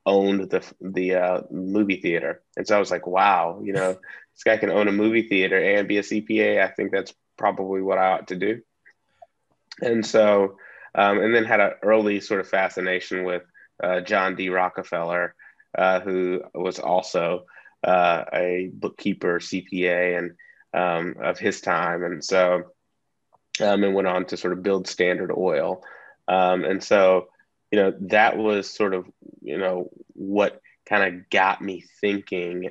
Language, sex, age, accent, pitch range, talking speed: English, male, 20-39, American, 90-100 Hz, 170 wpm